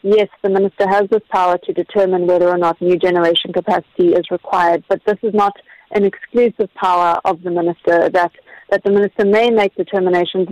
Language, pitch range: English, 185-205 Hz